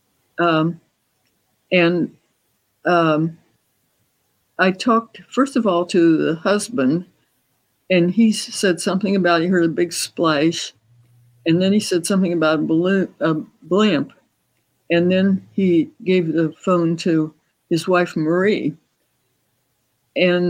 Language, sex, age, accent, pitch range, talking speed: English, female, 60-79, American, 150-185 Hz, 120 wpm